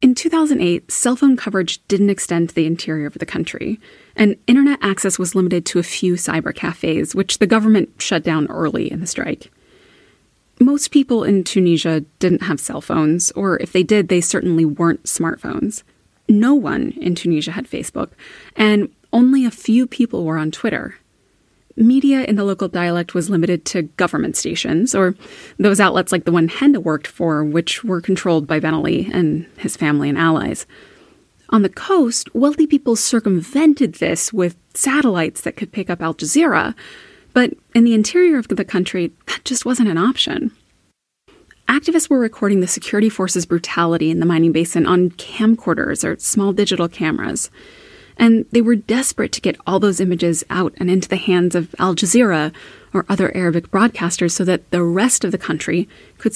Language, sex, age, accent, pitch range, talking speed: English, female, 20-39, American, 170-235 Hz, 175 wpm